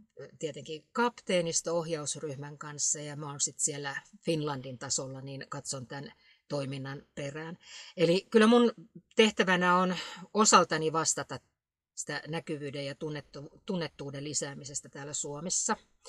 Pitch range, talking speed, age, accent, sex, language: 145-185 Hz, 110 wpm, 50-69, native, female, Finnish